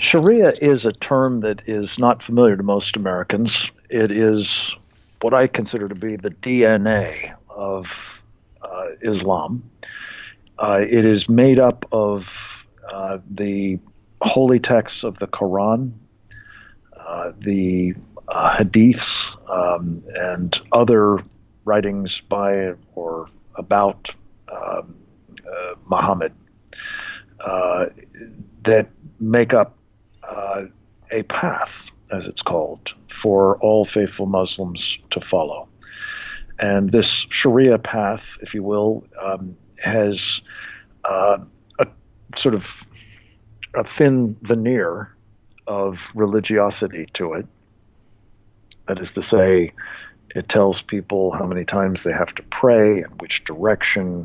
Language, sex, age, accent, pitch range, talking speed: English, male, 50-69, American, 95-110 Hz, 115 wpm